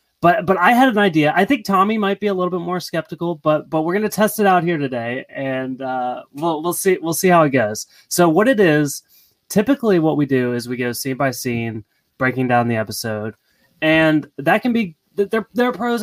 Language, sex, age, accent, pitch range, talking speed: English, male, 20-39, American, 120-170 Hz, 230 wpm